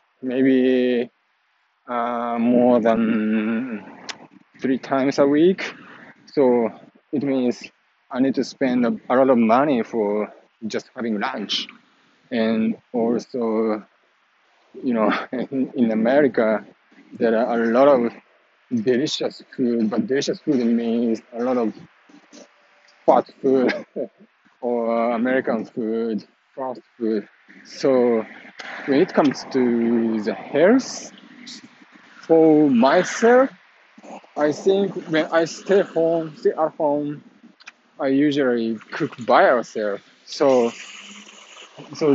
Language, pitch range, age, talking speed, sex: English, 115-165 Hz, 20-39, 110 wpm, male